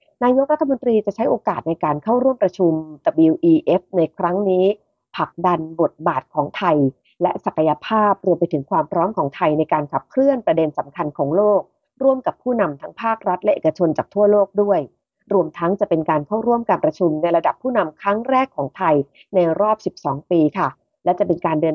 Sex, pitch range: female, 165-225 Hz